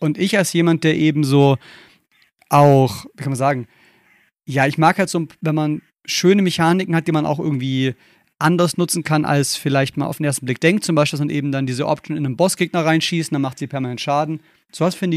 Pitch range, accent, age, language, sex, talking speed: 140-165 Hz, German, 30-49, German, male, 220 wpm